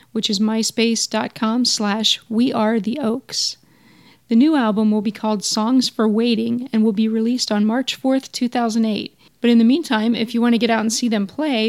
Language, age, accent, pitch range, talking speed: English, 40-59, American, 215-240 Hz, 200 wpm